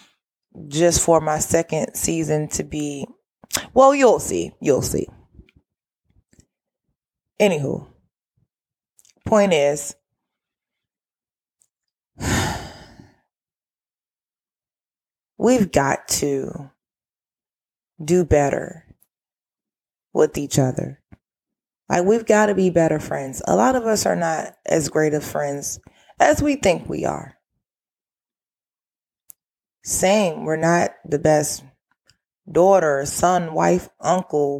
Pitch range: 150-190 Hz